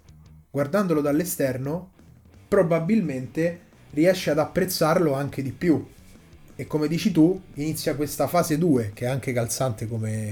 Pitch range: 125-165 Hz